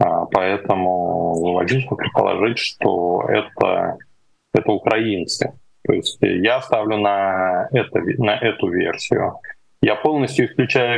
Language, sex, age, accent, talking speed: Russian, male, 20-39, native, 85 wpm